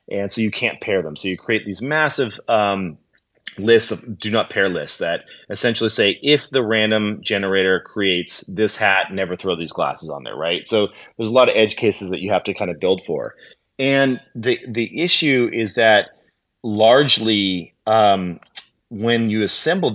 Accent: American